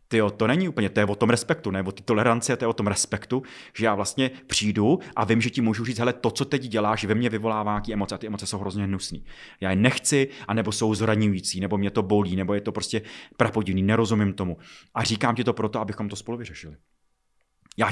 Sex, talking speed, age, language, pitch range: male, 240 wpm, 30-49, Czech, 105-125 Hz